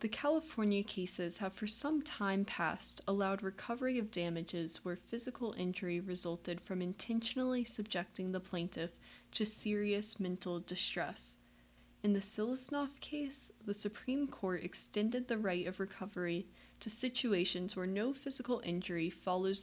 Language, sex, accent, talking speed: English, female, American, 135 wpm